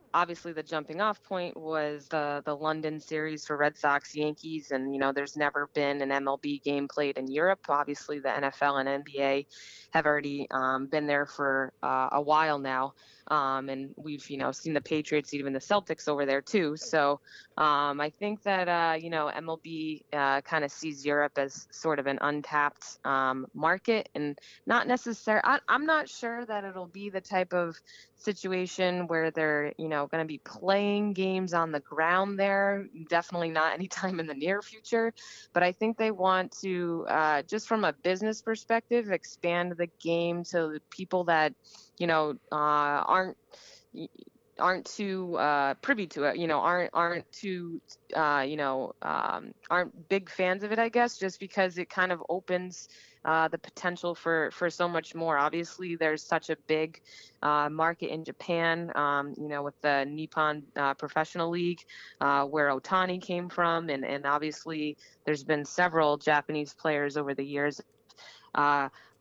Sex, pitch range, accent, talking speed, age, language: female, 145-180 Hz, American, 175 wpm, 20-39, English